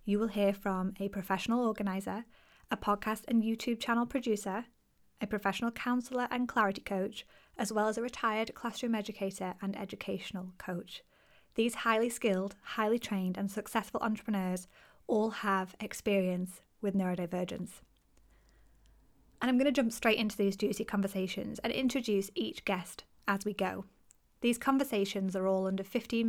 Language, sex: English, female